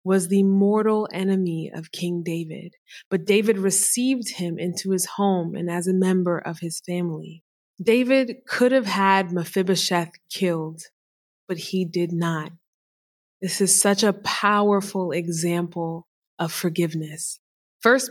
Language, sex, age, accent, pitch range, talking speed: English, female, 20-39, American, 170-205 Hz, 135 wpm